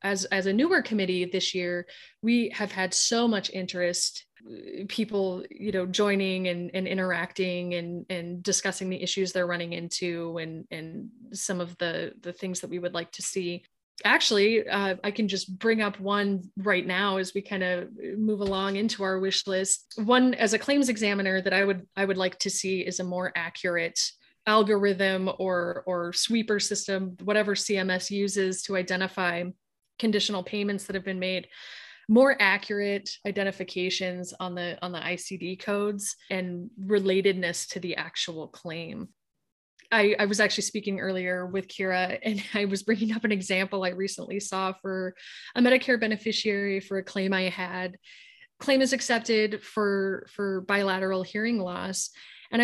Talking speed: 165 wpm